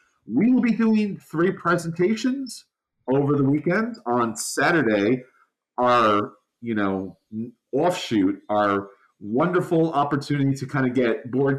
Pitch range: 120-165 Hz